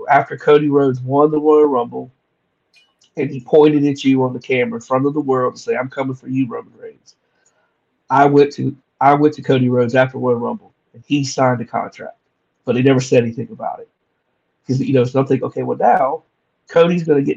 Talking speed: 215 wpm